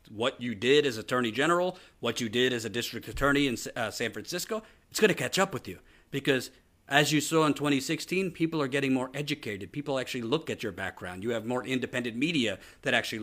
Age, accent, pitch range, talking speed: 40-59, American, 110-145 Hz, 220 wpm